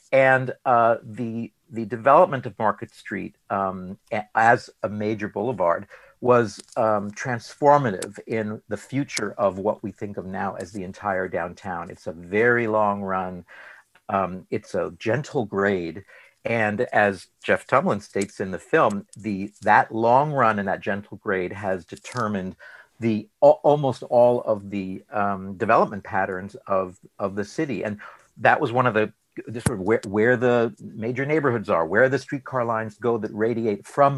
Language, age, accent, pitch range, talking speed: English, 50-69, American, 100-125 Hz, 165 wpm